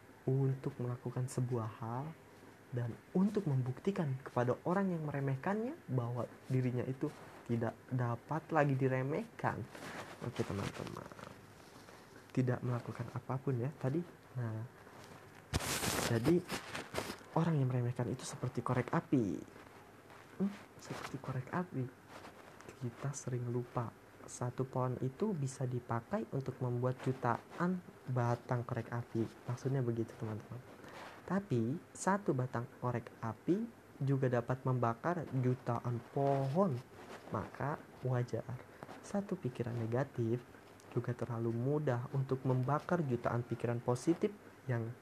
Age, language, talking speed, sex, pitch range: 20-39, Indonesian, 105 wpm, male, 120-140 Hz